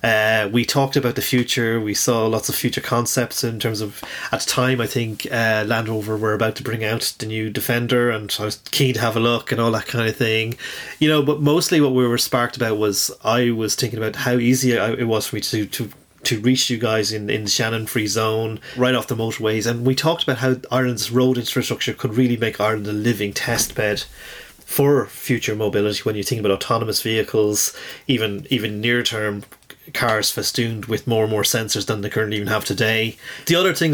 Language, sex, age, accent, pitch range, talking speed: English, male, 30-49, Irish, 110-130 Hz, 220 wpm